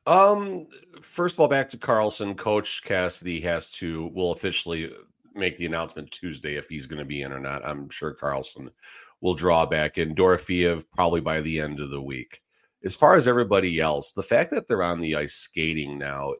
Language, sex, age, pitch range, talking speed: English, male, 40-59, 75-95 Hz, 200 wpm